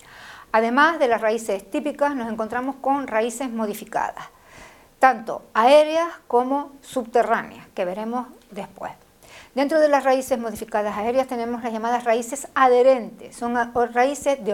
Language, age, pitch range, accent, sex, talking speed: Spanish, 50-69, 220-265 Hz, American, female, 130 wpm